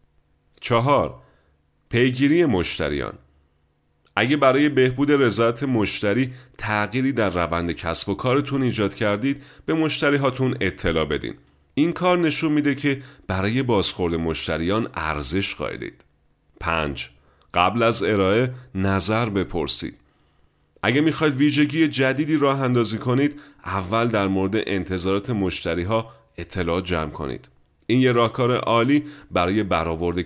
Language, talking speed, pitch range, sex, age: English, 115 wpm, 85-125 Hz, male, 40-59